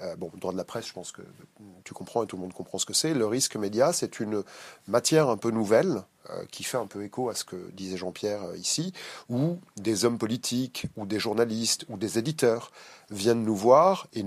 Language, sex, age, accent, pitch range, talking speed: French, male, 30-49, French, 100-140 Hz, 235 wpm